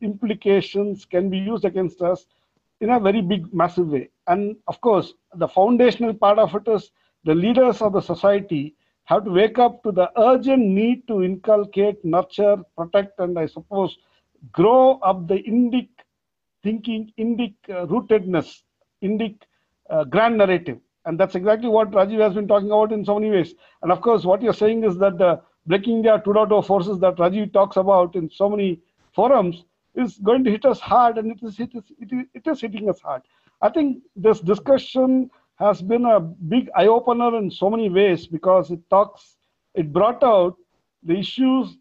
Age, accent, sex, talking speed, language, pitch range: 60-79, Indian, male, 180 wpm, English, 185-230 Hz